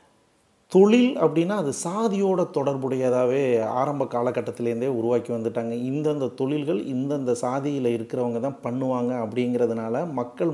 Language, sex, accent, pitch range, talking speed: Tamil, male, native, 120-145 Hz, 105 wpm